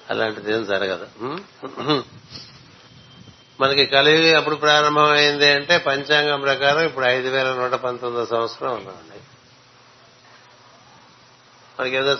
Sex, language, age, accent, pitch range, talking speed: male, Telugu, 60-79, native, 125-145 Hz, 80 wpm